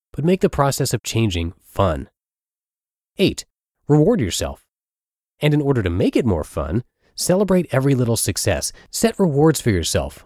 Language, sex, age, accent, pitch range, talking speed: English, male, 30-49, American, 105-145 Hz, 150 wpm